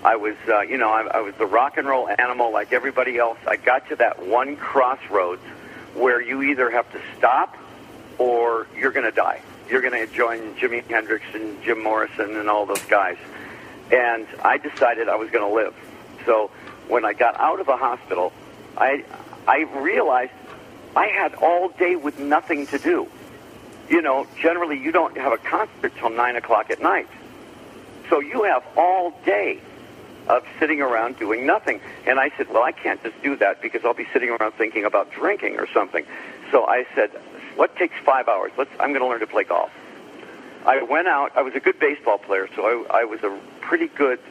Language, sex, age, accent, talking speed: English, male, 50-69, American, 195 wpm